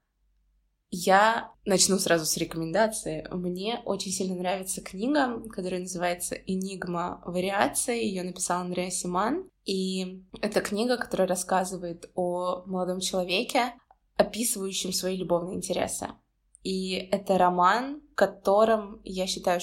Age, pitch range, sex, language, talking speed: 20-39, 175-200 Hz, female, Russian, 110 wpm